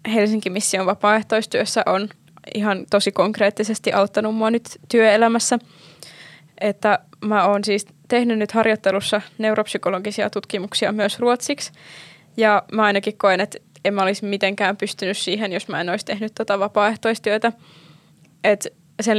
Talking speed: 130 wpm